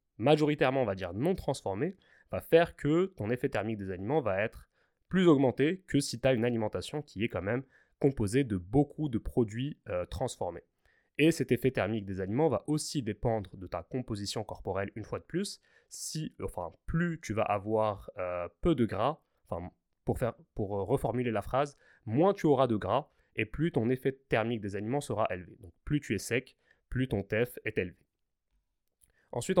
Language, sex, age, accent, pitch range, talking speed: French, male, 20-39, French, 110-145 Hz, 180 wpm